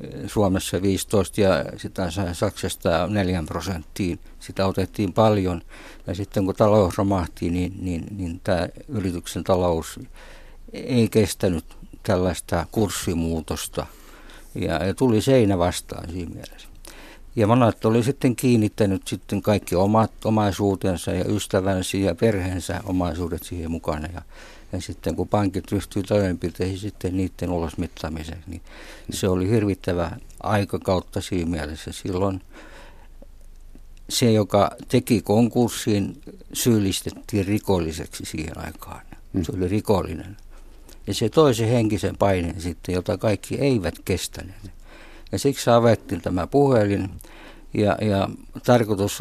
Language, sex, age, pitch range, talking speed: Finnish, male, 60-79, 90-105 Hz, 115 wpm